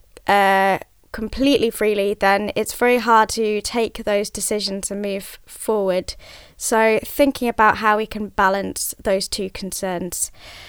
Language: English